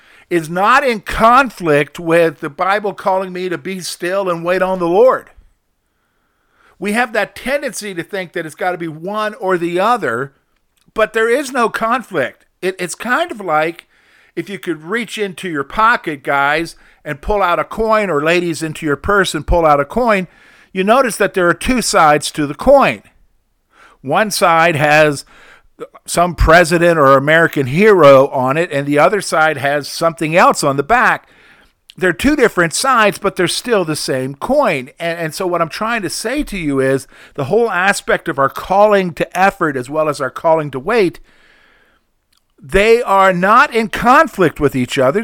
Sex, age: male, 50-69